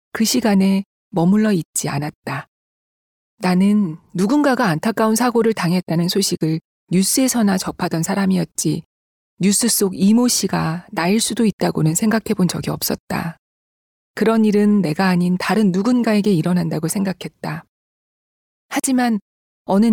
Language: Korean